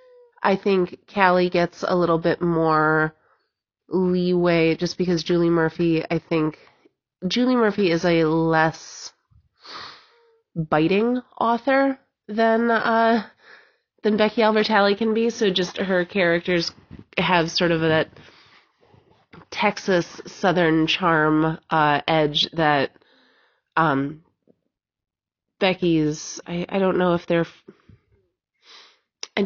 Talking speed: 105 wpm